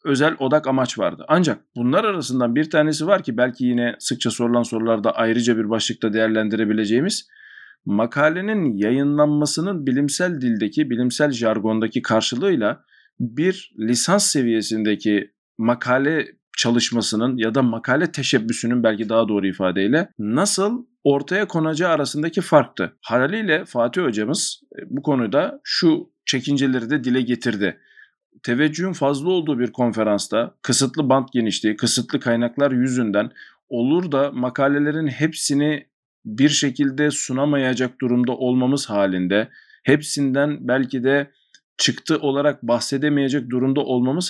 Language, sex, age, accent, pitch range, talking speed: Turkish, male, 50-69, native, 120-150 Hz, 115 wpm